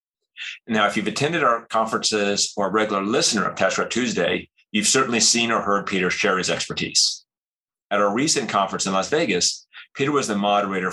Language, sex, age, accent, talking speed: English, male, 30-49, American, 185 wpm